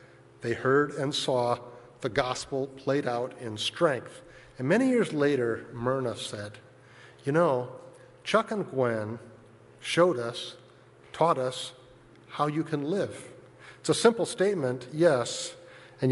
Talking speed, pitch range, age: 130 wpm, 120-155 Hz, 50-69